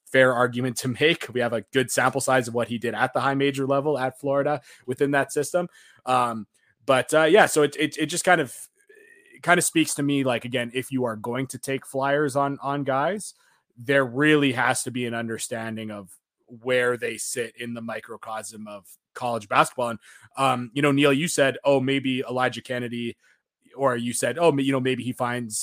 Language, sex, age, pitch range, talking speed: English, male, 20-39, 115-140 Hz, 210 wpm